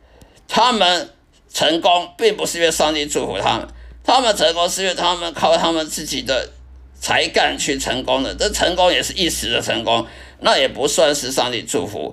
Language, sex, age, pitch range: Chinese, male, 50-69, 150-200 Hz